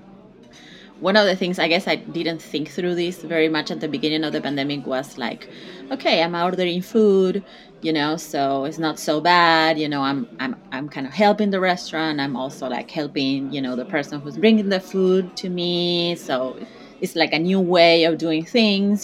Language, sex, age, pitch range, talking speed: English, female, 30-49, 145-180 Hz, 205 wpm